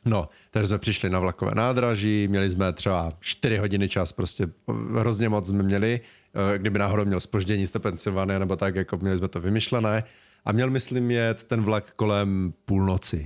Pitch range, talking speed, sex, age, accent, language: 95-110 Hz, 170 wpm, male, 30-49, native, Czech